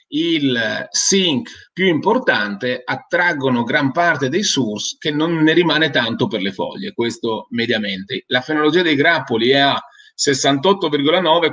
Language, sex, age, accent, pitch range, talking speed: Italian, male, 40-59, native, 130-180 Hz, 135 wpm